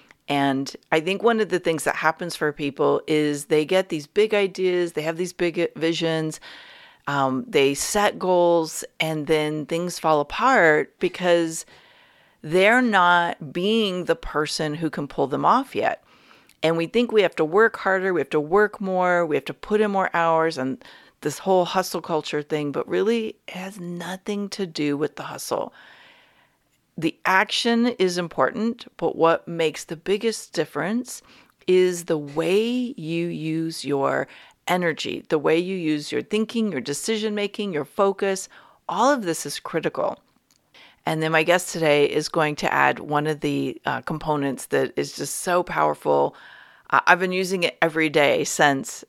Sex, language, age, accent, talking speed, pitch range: female, English, 40-59, American, 165 wpm, 155-195 Hz